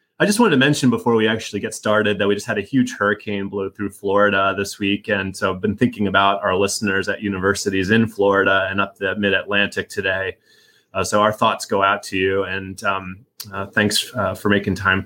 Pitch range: 100-125 Hz